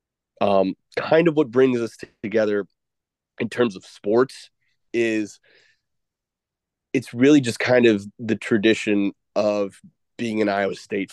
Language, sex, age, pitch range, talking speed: English, male, 30-49, 105-145 Hz, 130 wpm